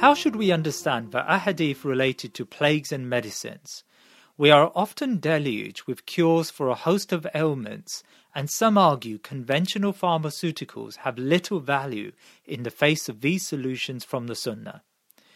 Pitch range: 135-180 Hz